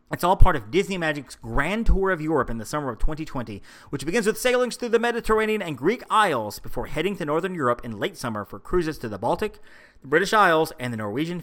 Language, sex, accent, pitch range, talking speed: English, male, American, 125-185 Hz, 230 wpm